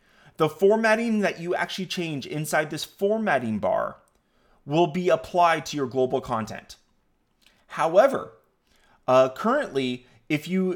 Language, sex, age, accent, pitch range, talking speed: English, male, 30-49, American, 120-160 Hz, 125 wpm